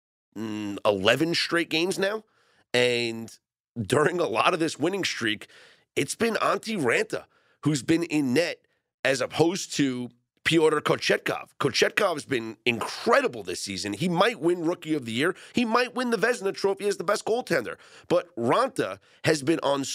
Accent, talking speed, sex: American, 160 wpm, male